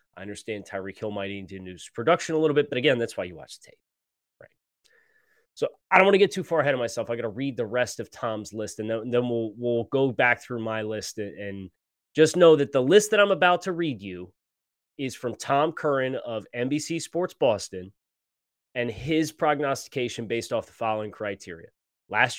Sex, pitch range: male, 110-145 Hz